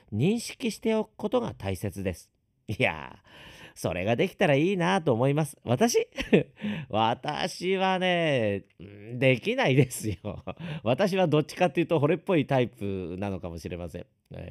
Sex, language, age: male, Japanese, 40-59